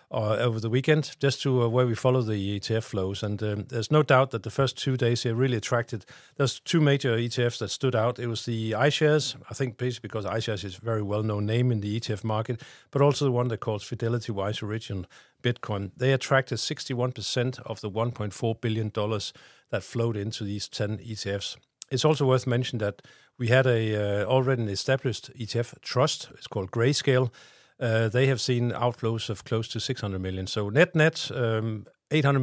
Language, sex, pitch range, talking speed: English, male, 105-125 Hz, 195 wpm